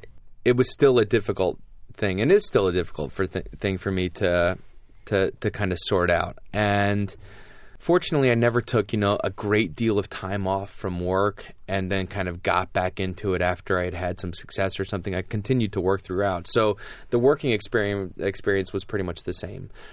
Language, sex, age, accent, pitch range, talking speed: English, male, 20-39, American, 95-110 Hz, 200 wpm